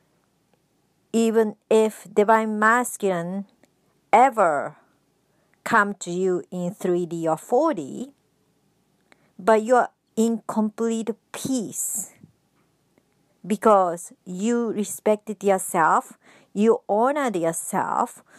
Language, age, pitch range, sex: English, 50-69, 190-235 Hz, male